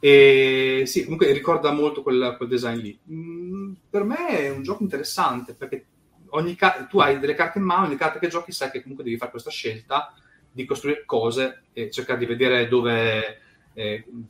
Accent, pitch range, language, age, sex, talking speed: native, 115-150 Hz, Italian, 30-49, male, 185 wpm